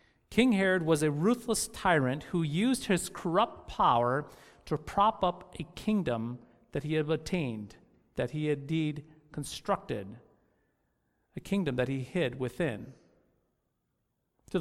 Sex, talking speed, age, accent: male, 130 wpm, 40-59, American